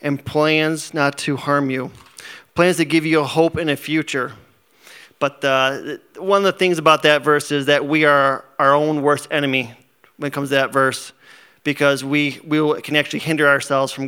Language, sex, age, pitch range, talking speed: English, male, 30-49, 135-150 Hz, 195 wpm